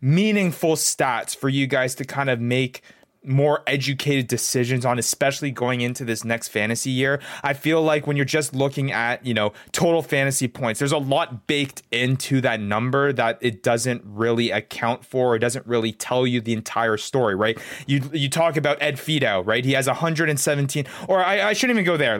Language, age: English, 20-39